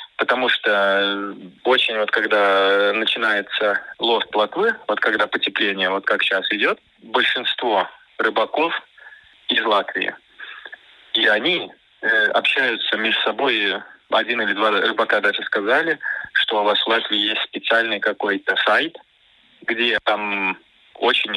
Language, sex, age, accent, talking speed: Russian, male, 20-39, native, 120 wpm